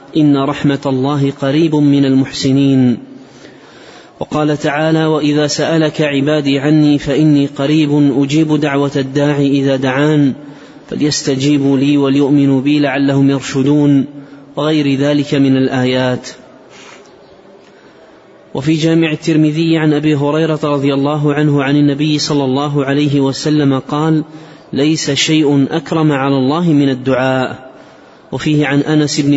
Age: 30-49